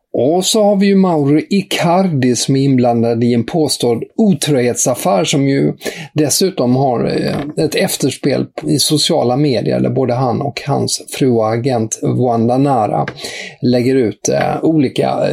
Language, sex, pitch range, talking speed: English, male, 130-170 Hz, 135 wpm